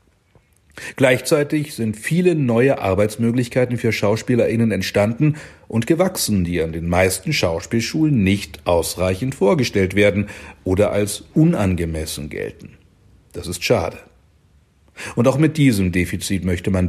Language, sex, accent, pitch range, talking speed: German, male, German, 95-125 Hz, 115 wpm